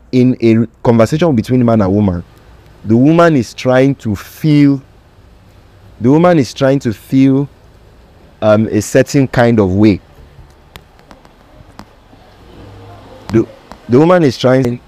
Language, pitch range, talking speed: English, 100-125 Hz, 120 wpm